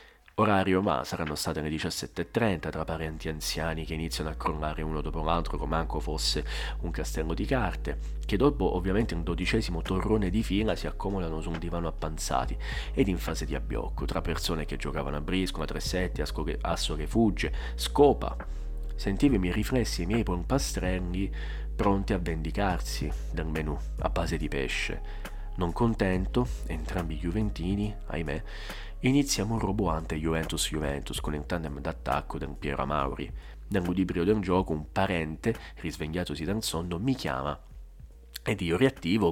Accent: native